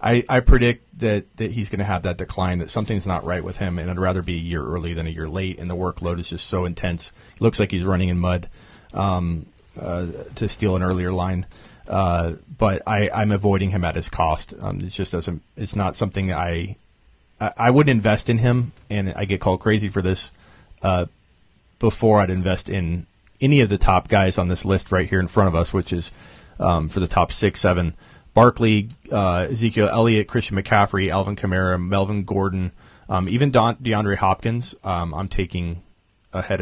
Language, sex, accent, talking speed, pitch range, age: English, male, American, 205 wpm, 90-105 Hz, 30-49